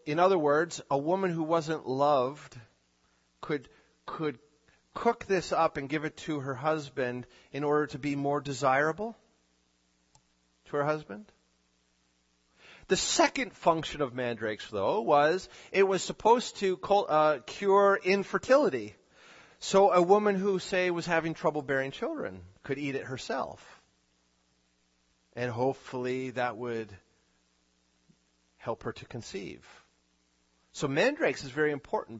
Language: English